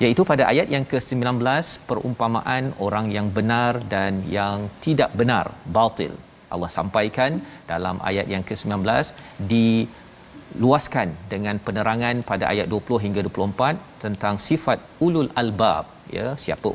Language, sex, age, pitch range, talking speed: Malayalam, male, 40-59, 100-130 Hz, 125 wpm